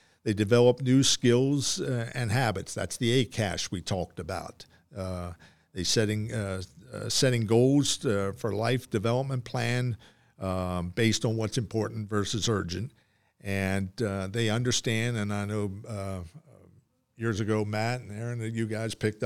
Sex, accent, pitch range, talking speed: male, American, 100-120 Hz, 135 wpm